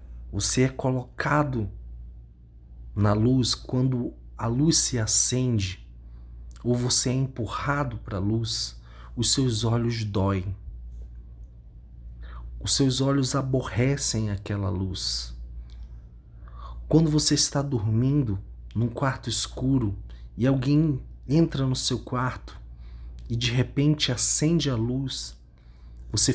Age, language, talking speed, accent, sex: 40-59, Portuguese, 105 wpm, Brazilian, male